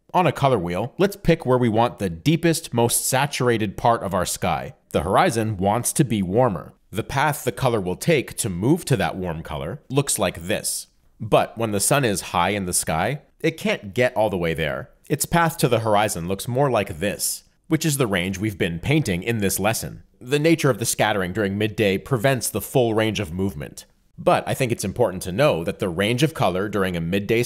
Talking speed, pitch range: 220 wpm, 100-140 Hz